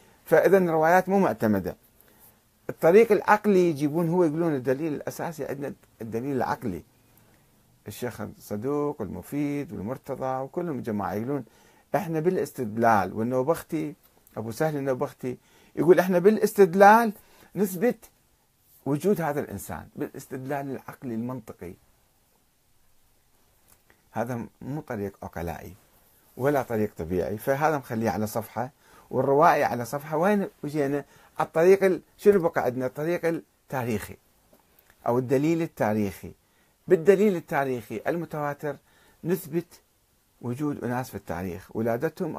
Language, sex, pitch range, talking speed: Arabic, male, 115-165 Hz, 100 wpm